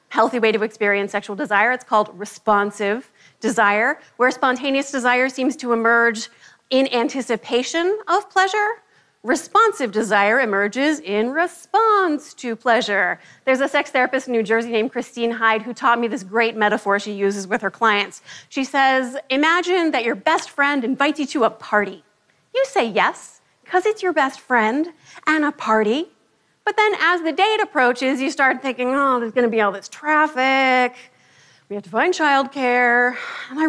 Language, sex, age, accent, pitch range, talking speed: German, female, 30-49, American, 220-320 Hz, 170 wpm